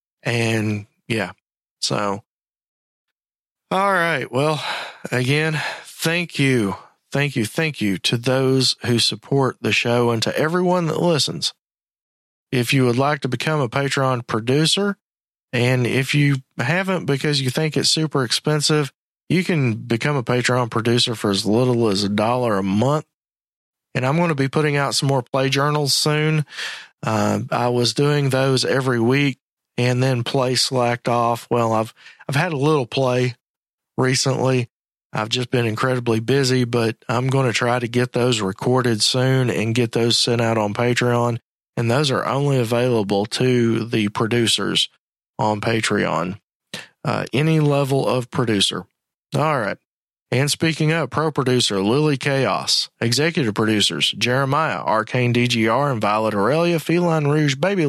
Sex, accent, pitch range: male, American, 115-145 Hz